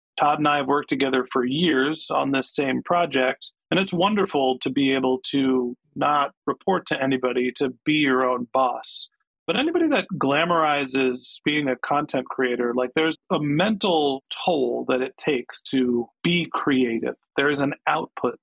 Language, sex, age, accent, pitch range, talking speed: English, male, 40-59, American, 130-160 Hz, 165 wpm